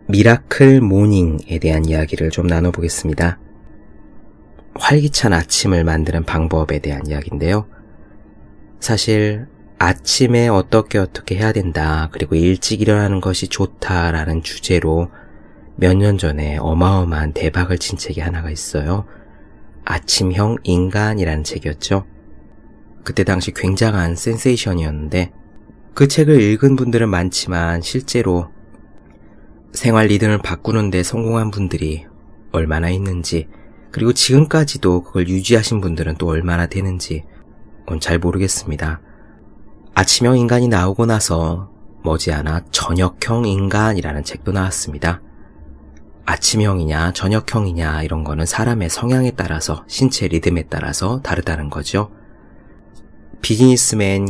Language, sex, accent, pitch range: Korean, male, native, 80-110 Hz